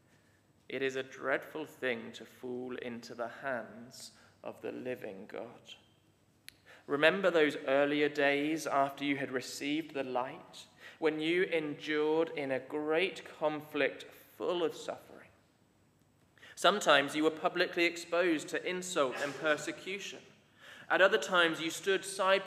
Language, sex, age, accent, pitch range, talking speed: English, male, 20-39, British, 130-165 Hz, 130 wpm